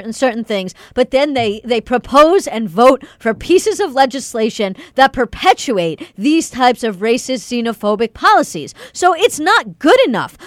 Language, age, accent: English, 40-59, American